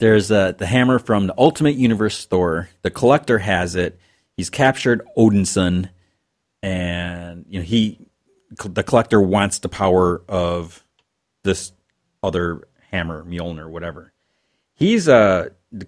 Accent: American